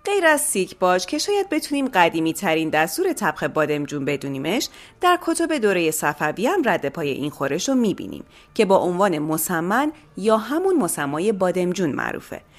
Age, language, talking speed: 30-49, Persian, 155 wpm